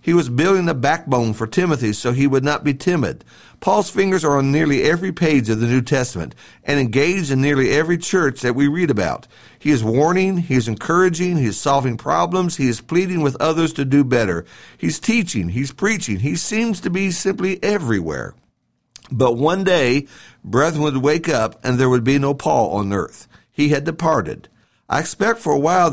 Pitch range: 125-175 Hz